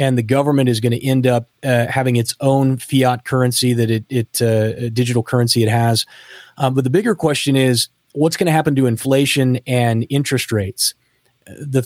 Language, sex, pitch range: English, male, 120-140 Hz